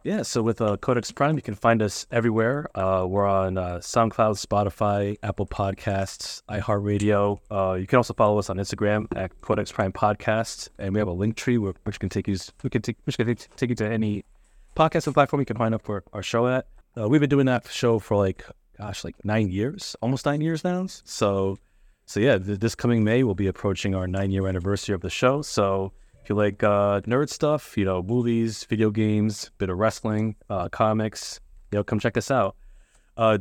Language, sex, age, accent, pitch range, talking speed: English, male, 30-49, American, 100-120 Hz, 210 wpm